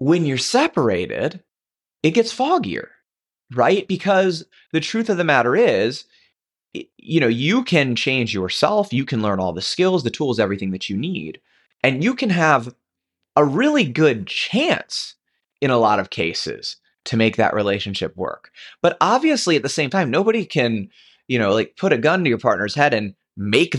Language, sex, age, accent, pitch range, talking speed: English, male, 30-49, American, 110-165 Hz, 175 wpm